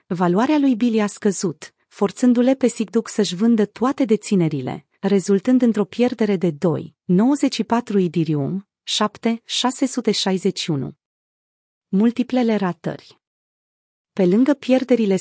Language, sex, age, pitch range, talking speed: Romanian, female, 30-49, 180-235 Hz, 95 wpm